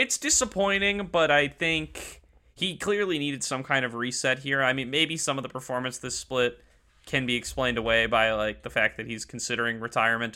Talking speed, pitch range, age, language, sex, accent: 195 wpm, 115-135 Hz, 20-39, English, male, American